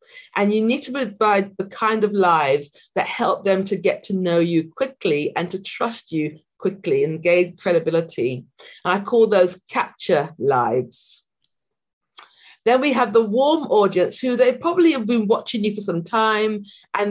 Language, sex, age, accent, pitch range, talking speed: English, female, 40-59, British, 180-240 Hz, 170 wpm